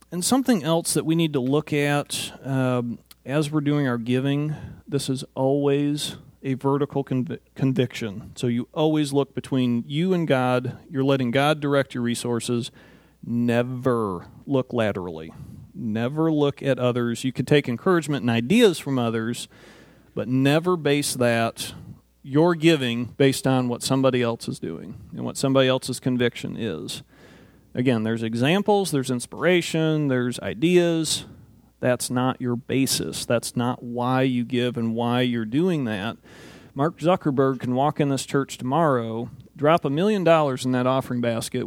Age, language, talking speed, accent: 40-59, English, 155 wpm, American